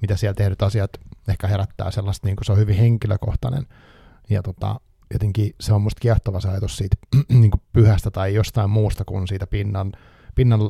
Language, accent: Finnish, native